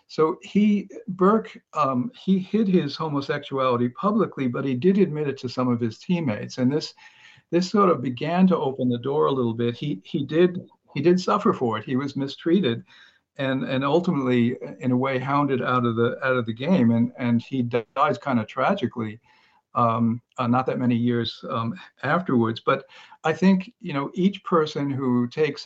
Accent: American